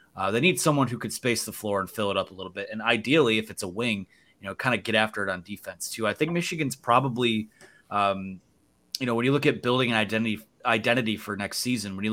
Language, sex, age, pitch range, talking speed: English, male, 30-49, 100-120 Hz, 255 wpm